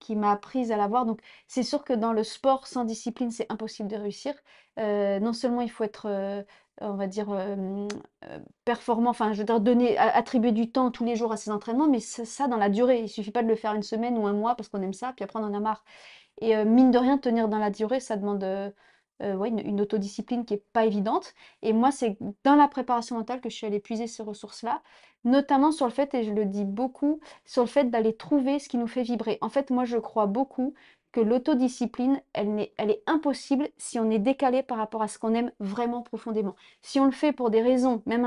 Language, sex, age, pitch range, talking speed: French, female, 30-49, 215-255 Hz, 245 wpm